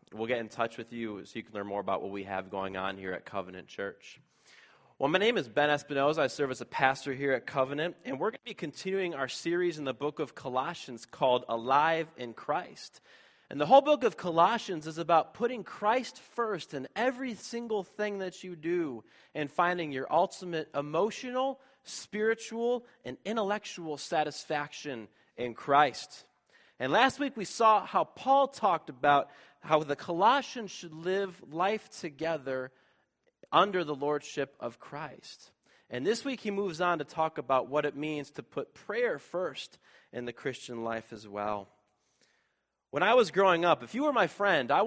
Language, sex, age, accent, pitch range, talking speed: English, male, 30-49, American, 130-190 Hz, 180 wpm